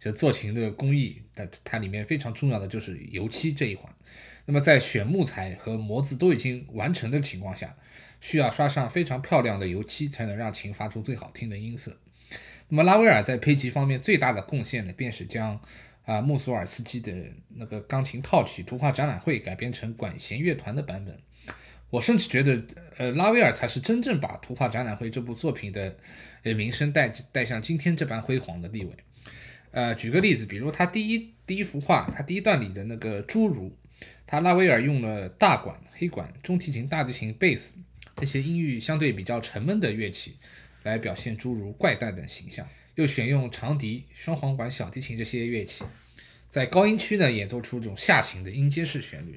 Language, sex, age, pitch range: Chinese, male, 20-39, 110-150 Hz